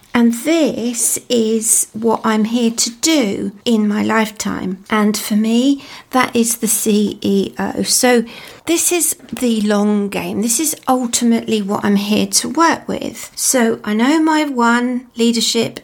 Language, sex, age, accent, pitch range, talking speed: English, female, 40-59, British, 220-260 Hz, 150 wpm